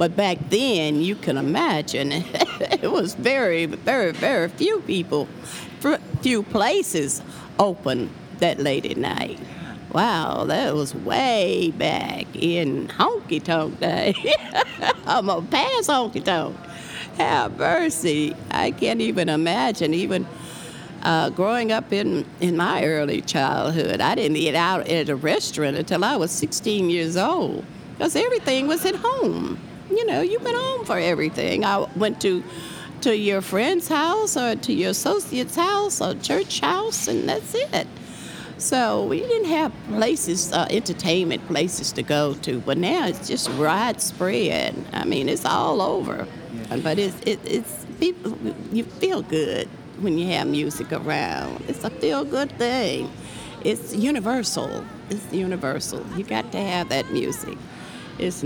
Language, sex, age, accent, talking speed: English, female, 50-69, American, 145 wpm